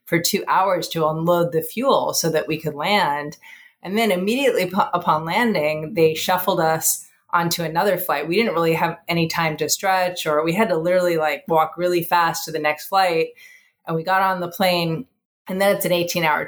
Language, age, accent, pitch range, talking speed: English, 30-49, American, 160-210 Hz, 205 wpm